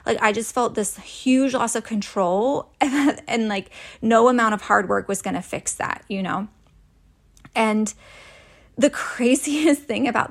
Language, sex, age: English, female, 20-39